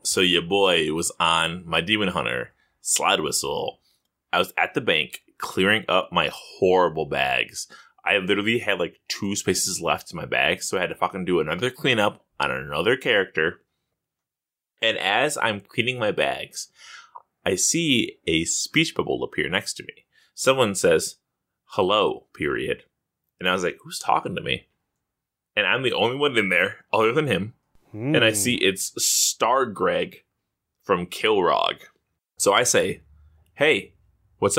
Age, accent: 20-39, American